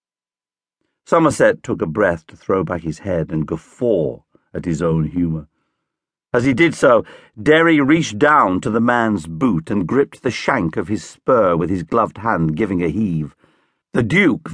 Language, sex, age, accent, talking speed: English, male, 50-69, British, 175 wpm